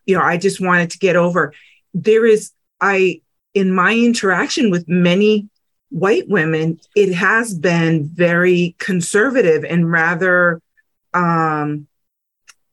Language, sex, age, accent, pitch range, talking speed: English, female, 30-49, American, 160-190 Hz, 125 wpm